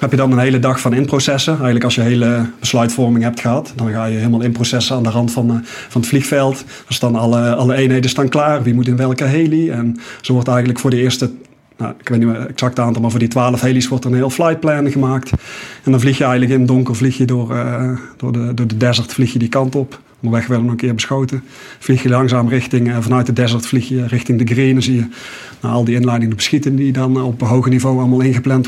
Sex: male